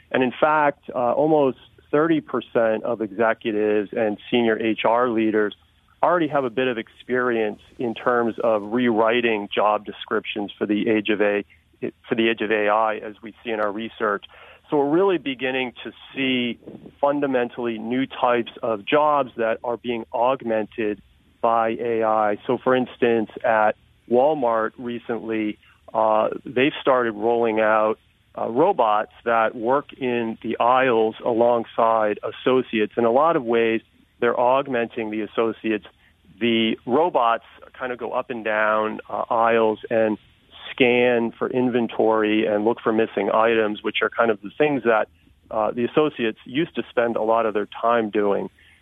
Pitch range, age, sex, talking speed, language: 110-125 Hz, 40-59, male, 150 wpm, English